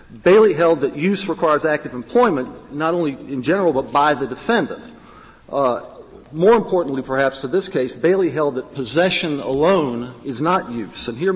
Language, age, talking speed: English, 50-69, 170 wpm